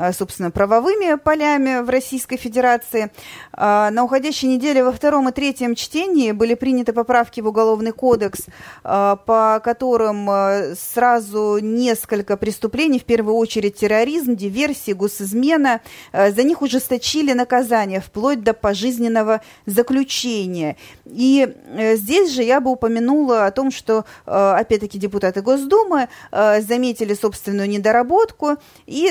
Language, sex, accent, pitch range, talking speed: Russian, female, native, 205-255 Hz, 115 wpm